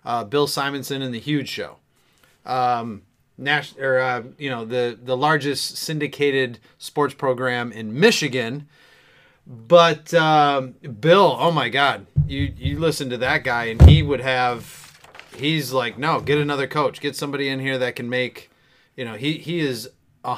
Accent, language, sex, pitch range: American, English, male, 130-160 Hz